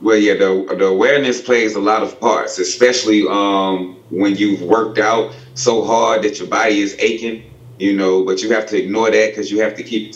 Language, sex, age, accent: English, male, 30-49, American